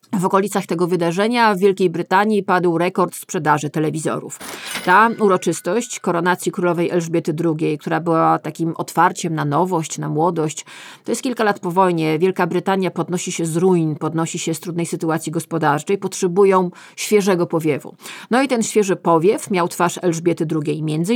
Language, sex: Polish, female